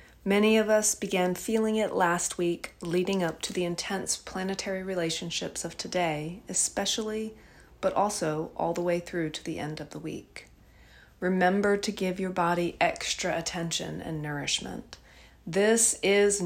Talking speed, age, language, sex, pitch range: 150 wpm, 40-59, English, female, 155-195 Hz